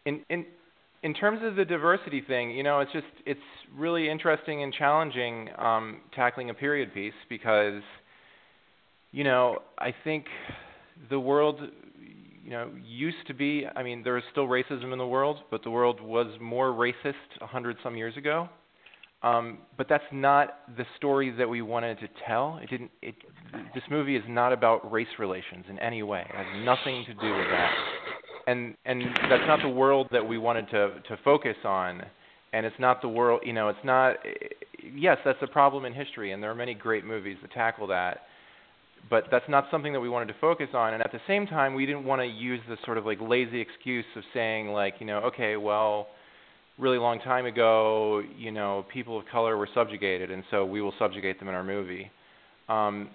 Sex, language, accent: male, English, American